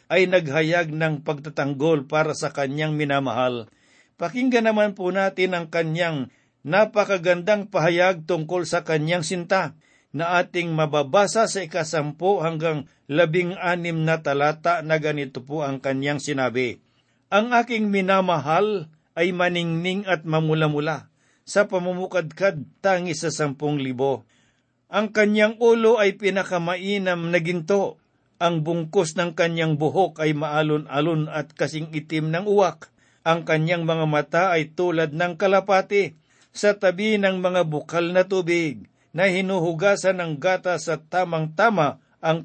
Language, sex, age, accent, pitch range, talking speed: Filipino, male, 50-69, native, 150-185 Hz, 125 wpm